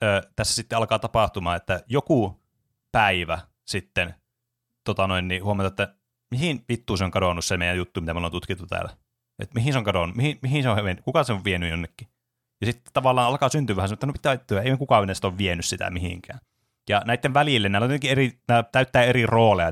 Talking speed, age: 215 wpm, 30-49